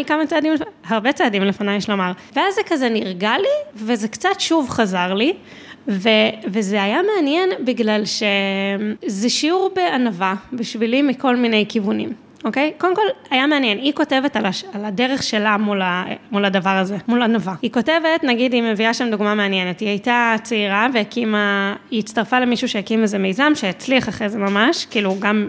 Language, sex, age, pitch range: Hebrew, female, 20-39, 210-290 Hz